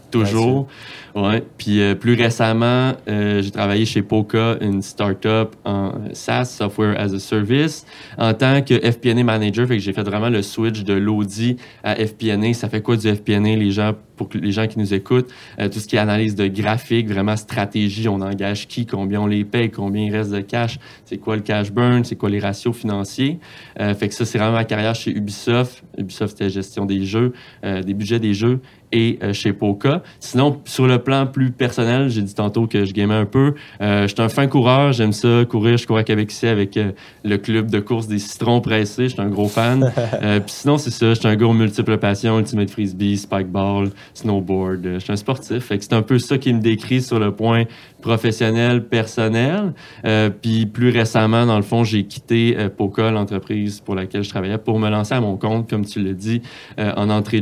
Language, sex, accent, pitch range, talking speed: French, male, Canadian, 105-120 Hz, 215 wpm